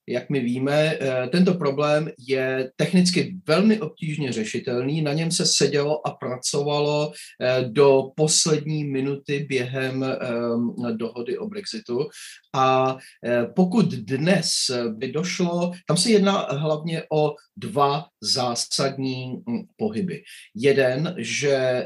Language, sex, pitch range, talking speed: Czech, male, 125-175 Hz, 105 wpm